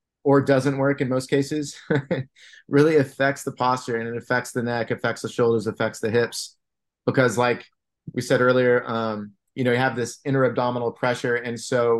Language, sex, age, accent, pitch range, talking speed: English, male, 30-49, American, 120-135 Hz, 185 wpm